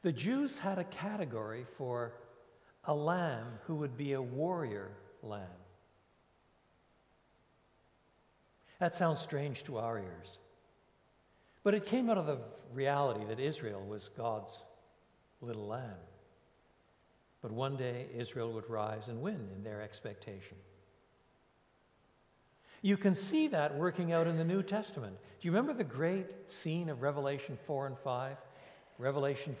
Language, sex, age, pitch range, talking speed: English, male, 60-79, 120-150 Hz, 135 wpm